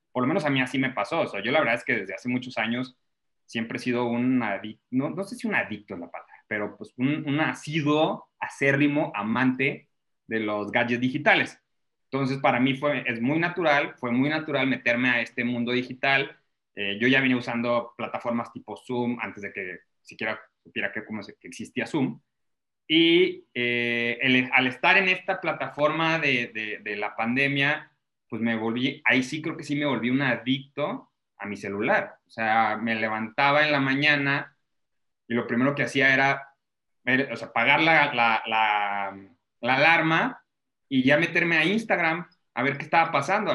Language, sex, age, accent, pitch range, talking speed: Spanish, male, 30-49, Mexican, 120-160 Hz, 185 wpm